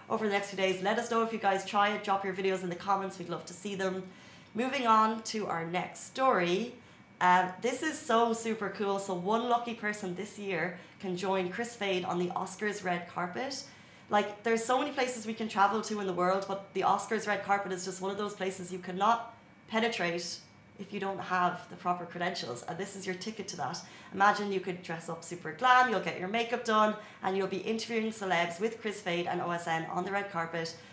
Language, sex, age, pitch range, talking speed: Arabic, female, 30-49, 180-215 Hz, 225 wpm